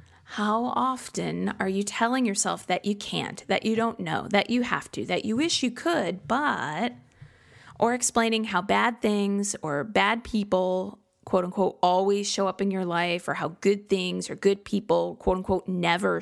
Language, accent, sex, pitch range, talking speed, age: English, American, female, 185-225 Hz, 180 wpm, 20-39